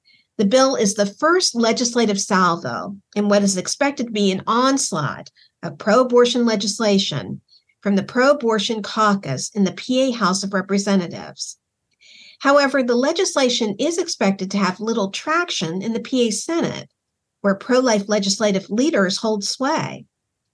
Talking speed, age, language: 135 wpm, 50-69, English